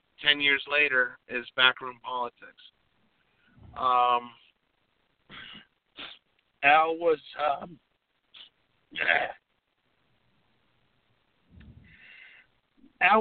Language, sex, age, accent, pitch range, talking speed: English, male, 50-69, American, 145-200 Hz, 50 wpm